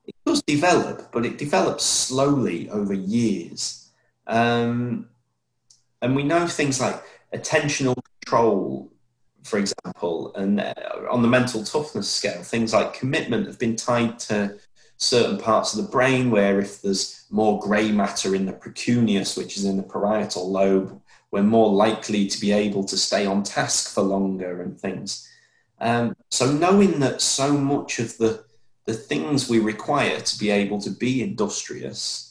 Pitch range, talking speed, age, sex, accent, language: 100-125 Hz, 155 wpm, 30-49, male, British, English